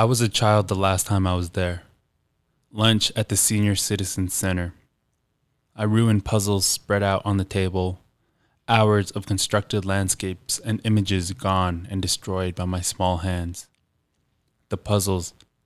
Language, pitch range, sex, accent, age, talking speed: English, 95-110 Hz, male, American, 20-39, 150 wpm